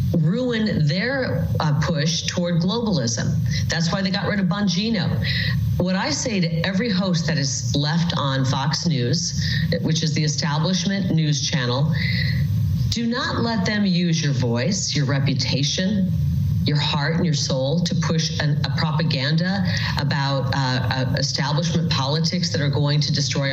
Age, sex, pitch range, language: 40-59, female, 145-175 Hz, English